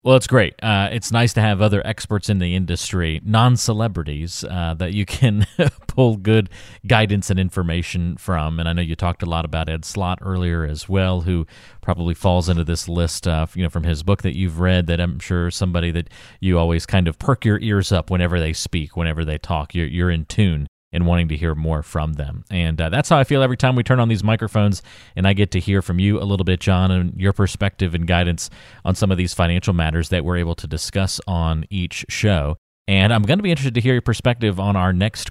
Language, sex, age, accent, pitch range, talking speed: English, male, 30-49, American, 85-105 Hz, 235 wpm